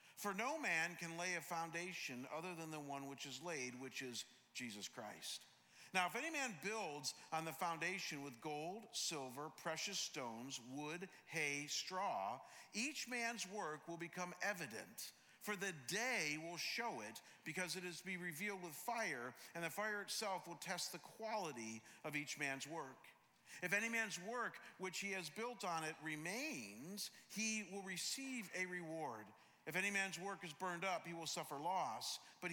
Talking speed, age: 175 wpm, 50-69